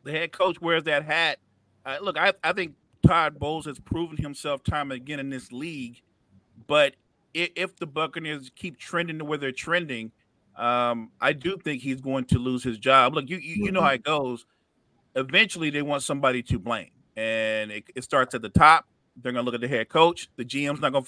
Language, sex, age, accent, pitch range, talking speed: English, male, 40-59, American, 125-170 Hz, 215 wpm